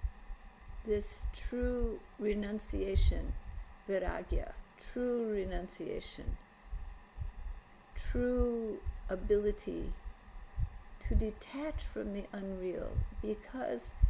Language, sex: English, female